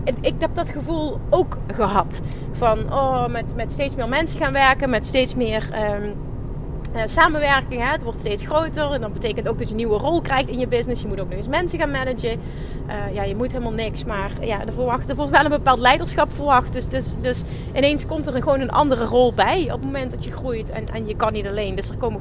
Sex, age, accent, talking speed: female, 30-49, Dutch, 245 wpm